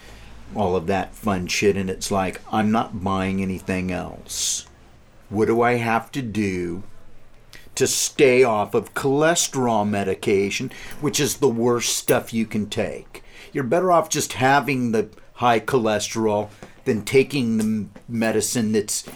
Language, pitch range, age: English, 100-120 Hz, 50-69